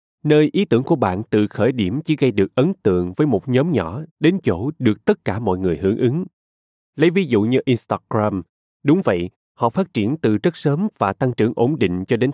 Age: 20-39